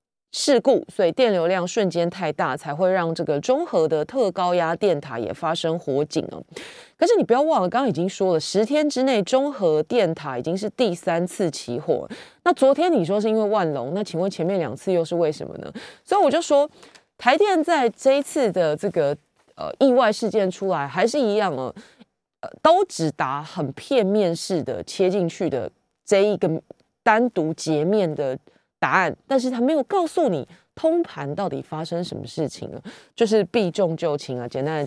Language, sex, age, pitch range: Chinese, female, 20-39, 160-255 Hz